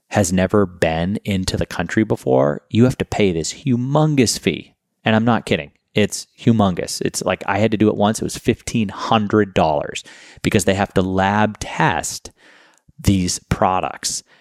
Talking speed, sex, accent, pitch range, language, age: 160 wpm, male, American, 85-105 Hz, English, 30-49